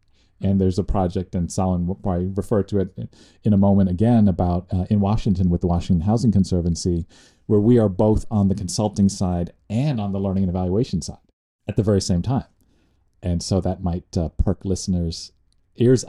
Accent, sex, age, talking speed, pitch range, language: American, male, 40-59, 195 wpm, 90-110 Hz, English